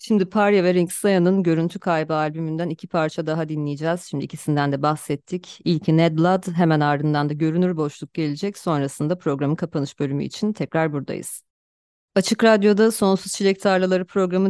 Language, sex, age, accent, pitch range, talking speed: Turkish, female, 30-49, native, 150-180 Hz, 155 wpm